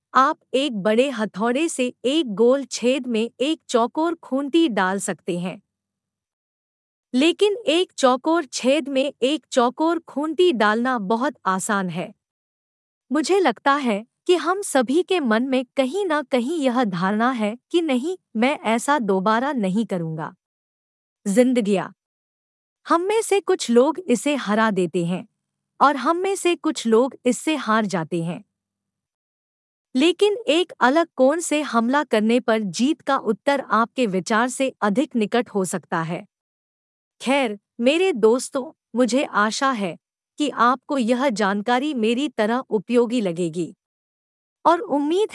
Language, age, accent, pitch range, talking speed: Hindi, 50-69, native, 205-290 Hz, 140 wpm